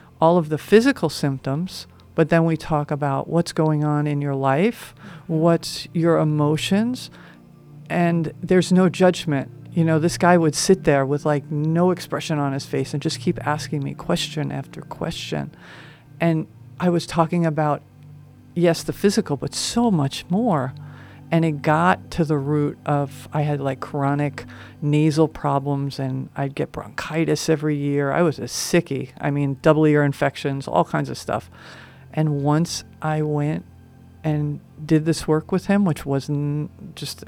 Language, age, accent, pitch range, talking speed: English, 50-69, American, 140-165 Hz, 165 wpm